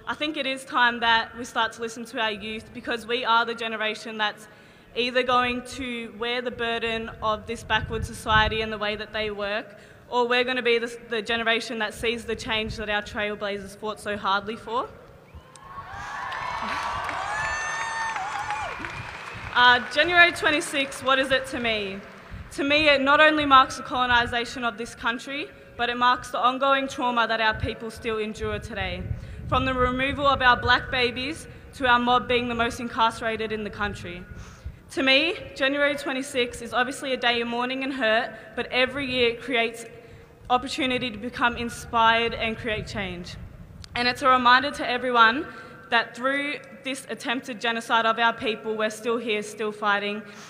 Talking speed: 170 wpm